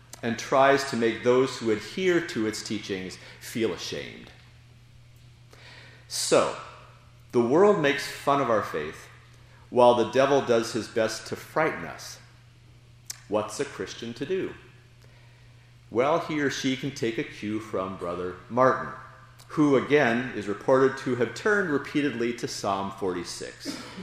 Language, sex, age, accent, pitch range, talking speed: English, male, 40-59, American, 115-135 Hz, 140 wpm